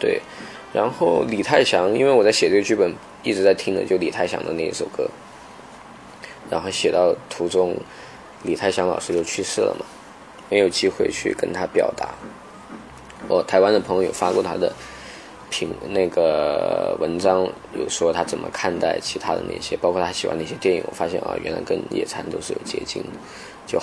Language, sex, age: Chinese, male, 20-39